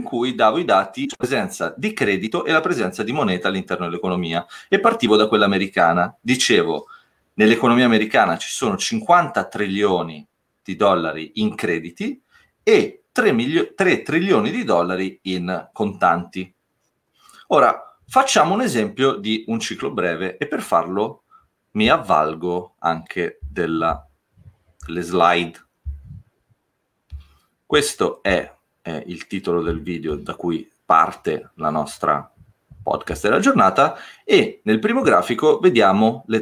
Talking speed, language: 125 wpm, Italian